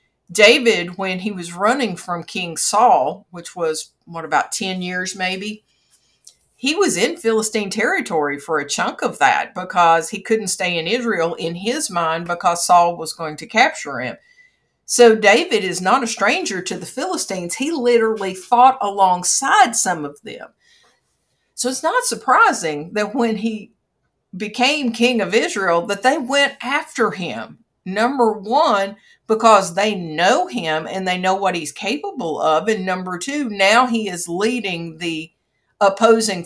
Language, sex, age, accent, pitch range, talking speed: English, female, 50-69, American, 175-230 Hz, 155 wpm